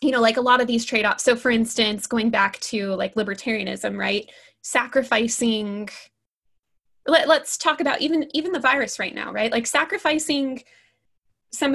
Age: 20-39